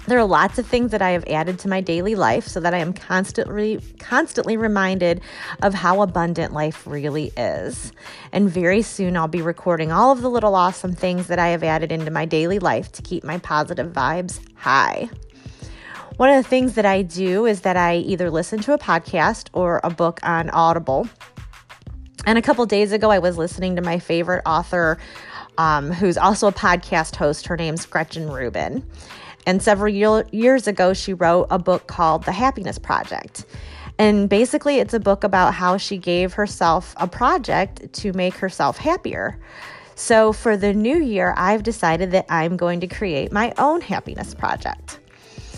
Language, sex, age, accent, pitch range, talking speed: English, female, 30-49, American, 170-215 Hz, 185 wpm